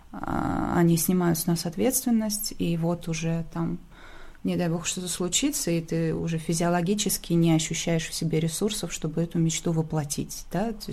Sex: female